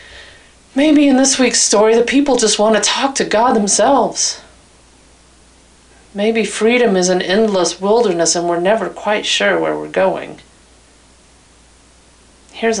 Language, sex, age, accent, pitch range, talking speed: English, female, 40-59, American, 165-220 Hz, 135 wpm